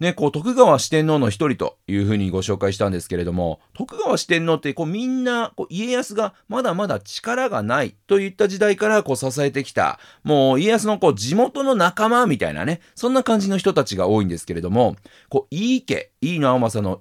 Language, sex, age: Japanese, male, 40-59